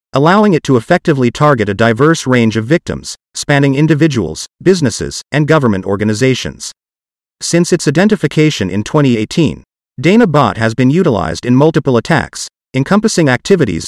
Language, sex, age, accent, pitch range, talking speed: English, male, 40-59, American, 115-165 Hz, 130 wpm